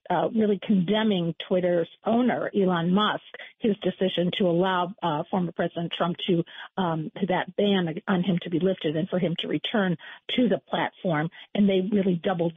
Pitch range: 175-210 Hz